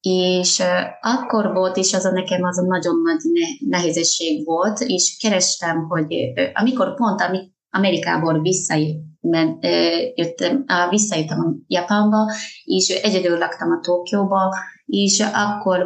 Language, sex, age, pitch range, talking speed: Hungarian, female, 20-39, 170-200 Hz, 145 wpm